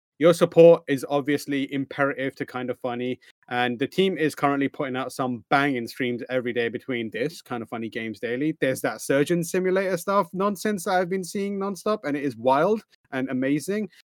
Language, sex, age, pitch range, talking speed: English, male, 30-49, 125-165 Hz, 190 wpm